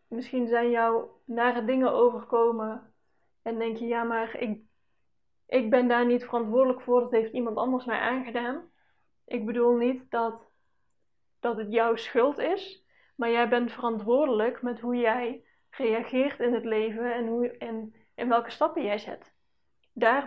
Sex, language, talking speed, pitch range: female, Dutch, 155 wpm, 230-250 Hz